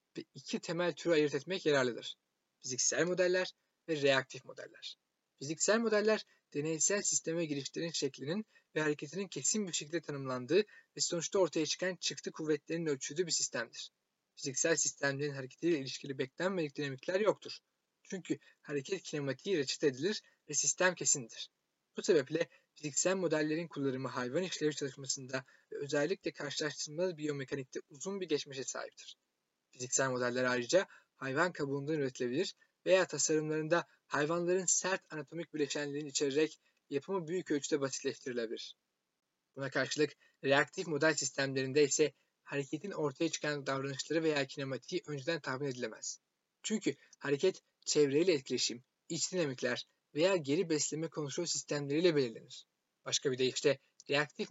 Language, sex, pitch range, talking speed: Turkish, male, 140-170 Hz, 125 wpm